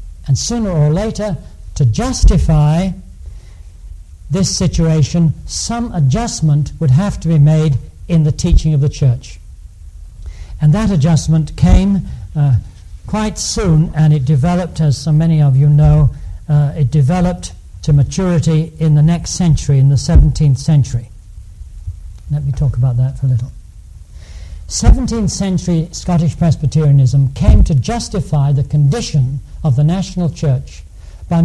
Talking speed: 135 wpm